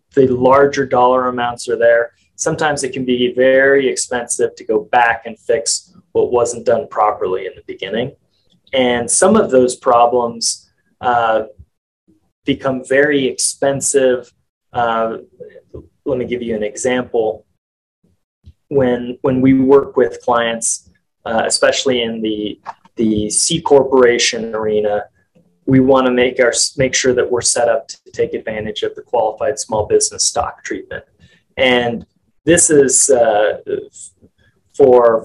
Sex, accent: male, American